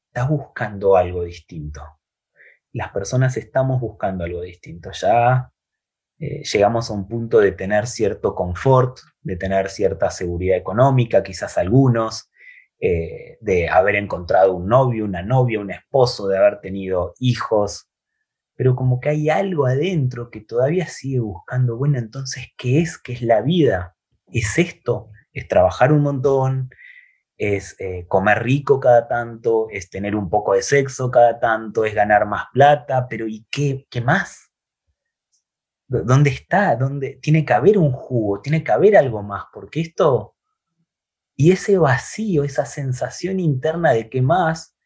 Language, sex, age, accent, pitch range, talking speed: Spanish, male, 30-49, Argentinian, 105-145 Hz, 145 wpm